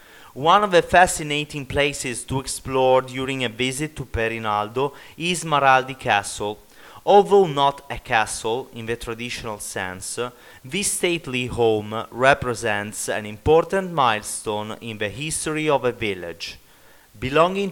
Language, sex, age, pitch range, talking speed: English, male, 30-49, 115-150 Hz, 125 wpm